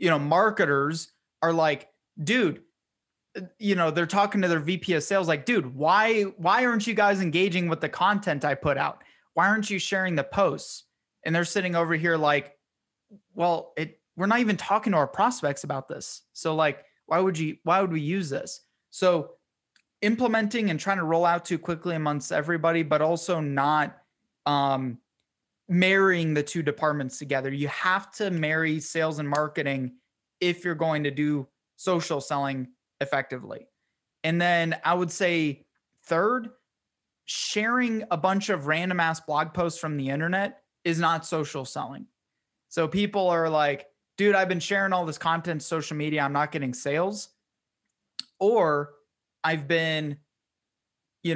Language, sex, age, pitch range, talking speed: English, male, 20-39, 150-185 Hz, 160 wpm